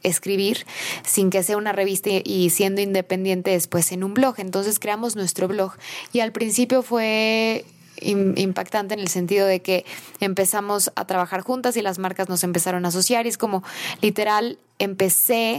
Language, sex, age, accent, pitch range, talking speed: Spanish, female, 20-39, Mexican, 185-220 Hz, 175 wpm